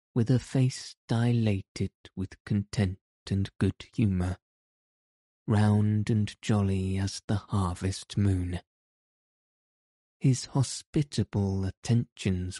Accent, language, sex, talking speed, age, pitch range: British, English, male, 90 wpm, 20-39, 95-115 Hz